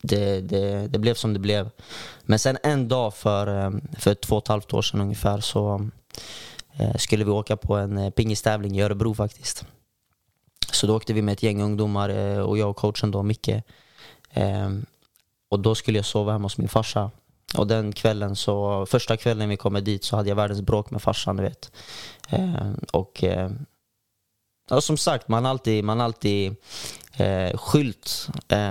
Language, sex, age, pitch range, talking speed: Swedish, male, 20-39, 100-115 Hz, 165 wpm